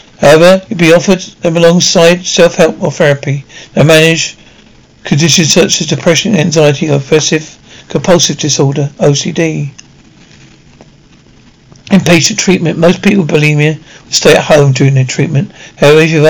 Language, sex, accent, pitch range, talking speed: English, male, British, 150-180 Hz, 135 wpm